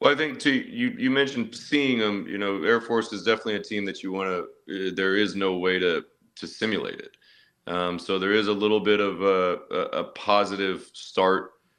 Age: 30-49